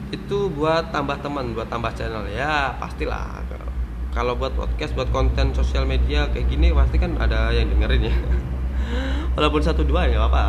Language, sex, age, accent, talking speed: Indonesian, male, 20-39, native, 165 wpm